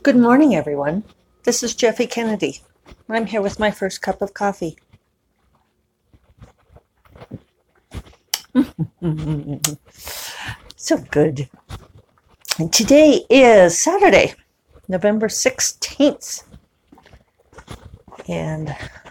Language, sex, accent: English, female, American